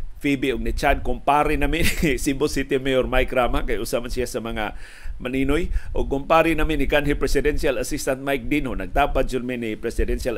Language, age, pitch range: Filipino, 40-59, 105-135 Hz